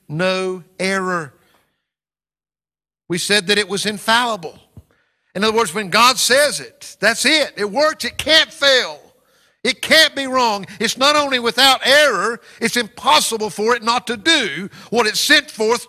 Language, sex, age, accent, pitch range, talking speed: English, male, 60-79, American, 135-220 Hz, 160 wpm